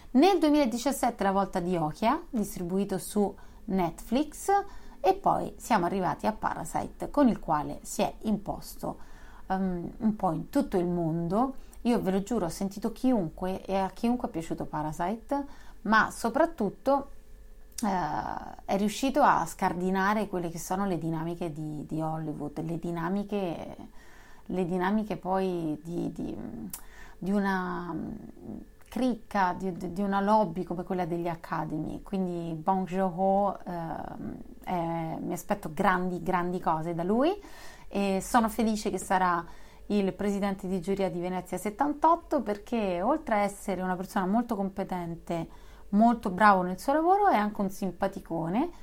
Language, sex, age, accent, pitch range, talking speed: Italian, female, 30-49, native, 180-230 Hz, 140 wpm